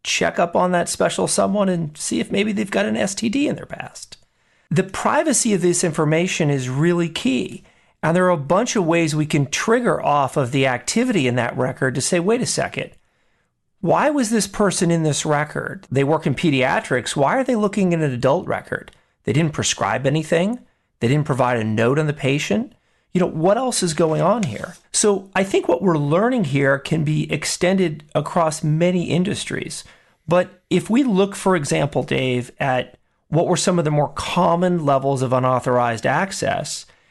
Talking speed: 190 wpm